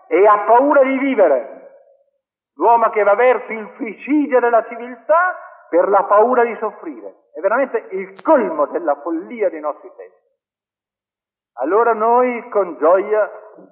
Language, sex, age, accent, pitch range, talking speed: Italian, male, 50-69, native, 125-205 Hz, 135 wpm